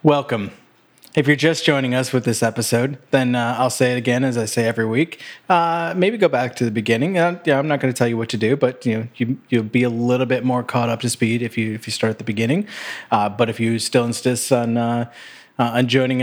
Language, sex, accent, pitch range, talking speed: English, male, American, 115-145 Hz, 260 wpm